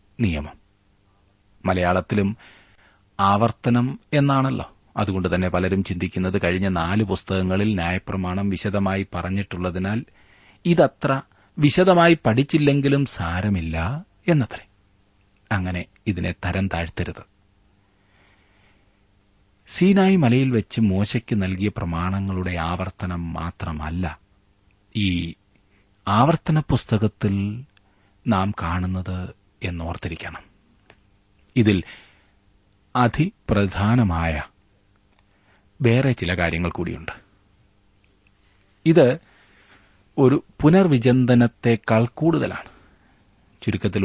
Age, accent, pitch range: 40-59, native, 95-115 Hz